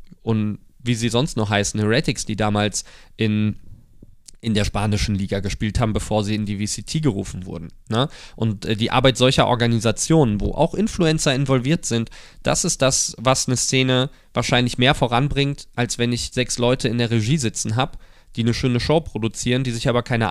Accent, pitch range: German, 110-135 Hz